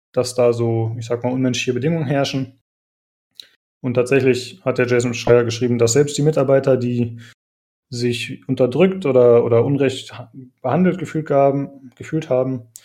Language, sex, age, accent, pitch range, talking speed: German, male, 20-39, German, 120-135 Hz, 140 wpm